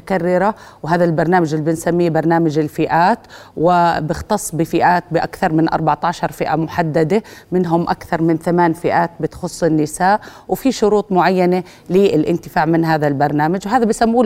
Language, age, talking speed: Arabic, 30-49, 120 wpm